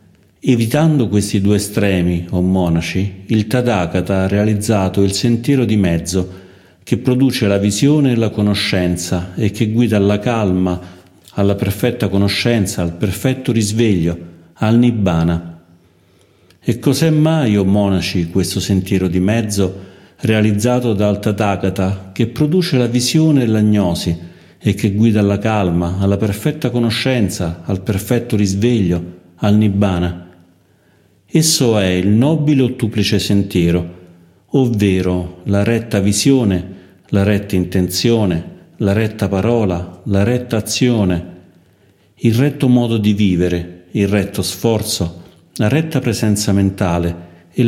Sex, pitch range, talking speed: male, 90-115 Hz, 125 wpm